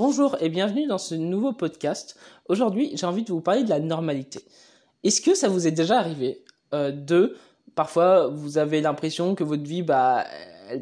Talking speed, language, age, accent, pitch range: 190 wpm, French, 20-39, French, 145-185 Hz